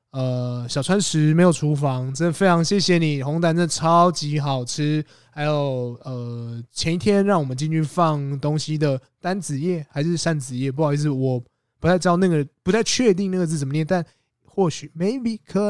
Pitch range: 135-170 Hz